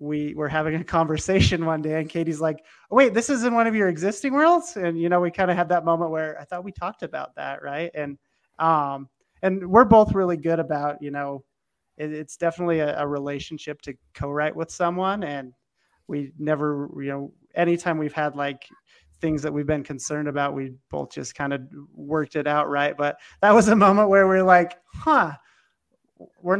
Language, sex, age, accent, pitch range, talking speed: English, male, 30-49, American, 145-175 Hz, 205 wpm